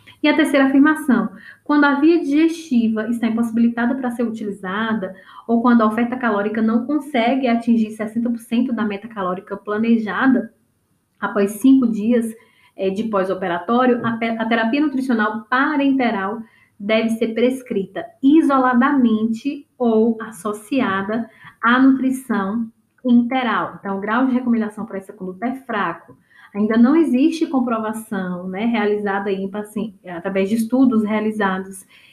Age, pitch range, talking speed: 10-29, 215-260 Hz, 130 wpm